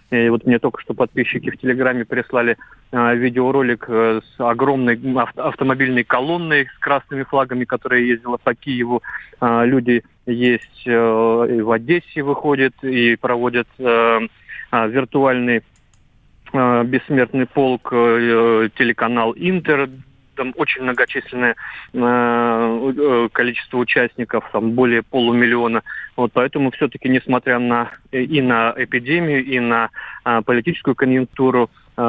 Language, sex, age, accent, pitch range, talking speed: Russian, male, 30-49, native, 115-130 Hz, 100 wpm